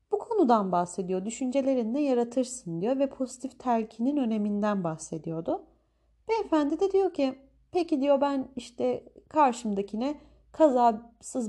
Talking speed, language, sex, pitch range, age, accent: 105 wpm, Turkish, female, 190-265 Hz, 30-49, native